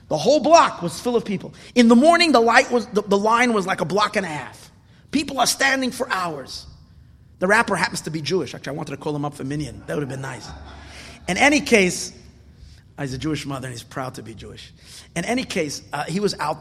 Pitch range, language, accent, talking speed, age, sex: 130-190 Hz, English, American, 245 wpm, 30-49, male